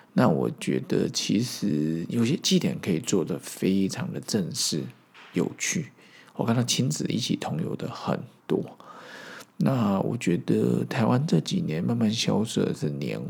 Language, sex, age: Chinese, male, 50-69